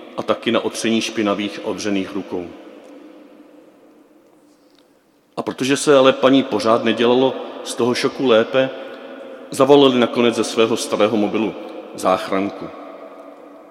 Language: Czech